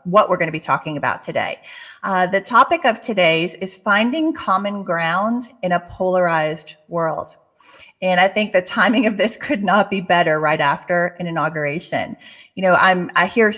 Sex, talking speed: female, 180 wpm